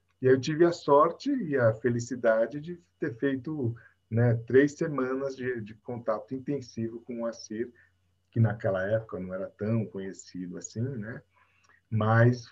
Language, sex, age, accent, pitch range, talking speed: Portuguese, male, 50-69, Brazilian, 110-150 Hz, 150 wpm